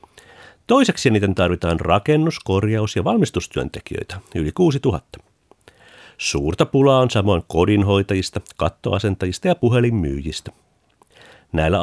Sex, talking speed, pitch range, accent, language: male, 95 wpm, 95-145 Hz, native, Finnish